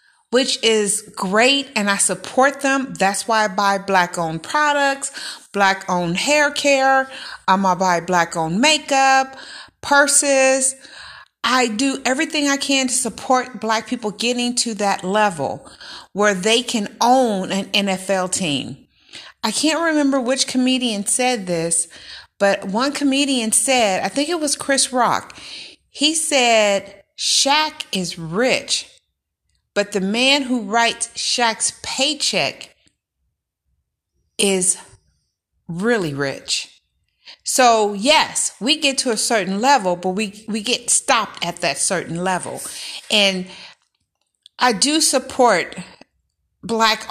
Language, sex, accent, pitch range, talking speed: English, female, American, 190-265 Hz, 125 wpm